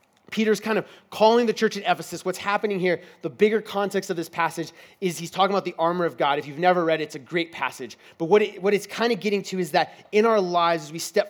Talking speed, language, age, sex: 270 wpm, English, 30-49, male